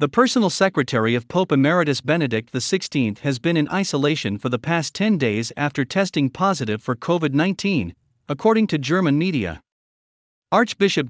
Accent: American